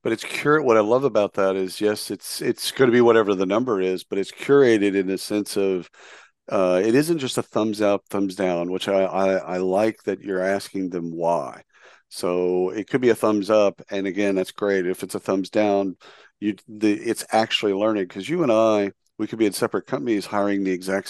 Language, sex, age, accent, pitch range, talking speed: English, male, 50-69, American, 90-105 Hz, 225 wpm